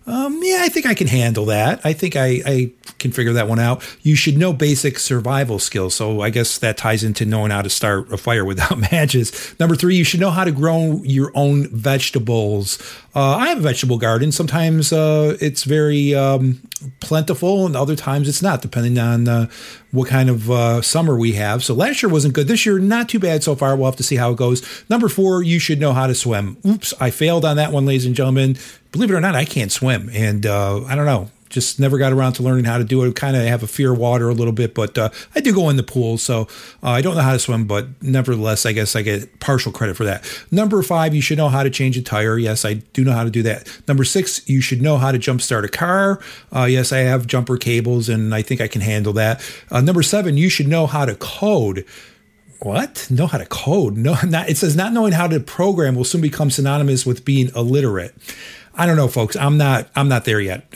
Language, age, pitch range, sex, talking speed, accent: English, 50-69, 120-155 Hz, male, 245 wpm, American